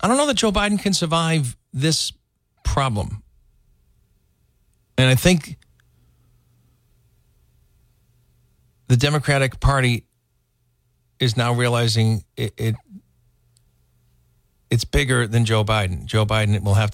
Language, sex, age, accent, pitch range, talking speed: English, male, 50-69, American, 105-130 Hz, 105 wpm